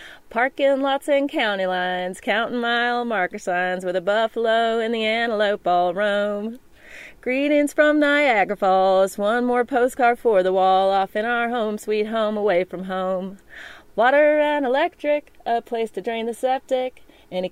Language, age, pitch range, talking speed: English, 30-49, 185-255 Hz, 160 wpm